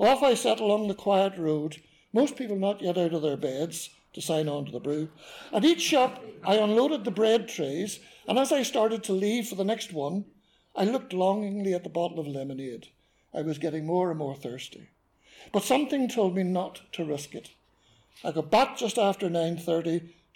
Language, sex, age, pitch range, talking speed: English, male, 60-79, 165-225 Hz, 200 wpm